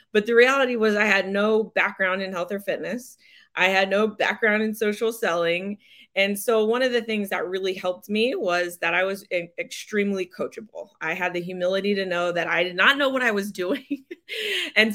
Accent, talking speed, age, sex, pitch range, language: American, 205 wpm, 30-49, female, 175-225 Hz, English